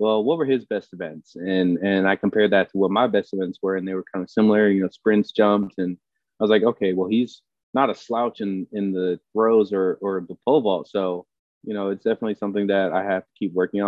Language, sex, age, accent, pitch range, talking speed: English, male, 20-39, American, 95-105 Hz, 250 wpm